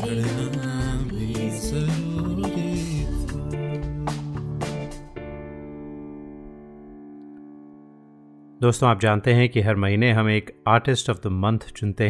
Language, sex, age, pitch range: Hindi, male, 30-49, 95-110 Hz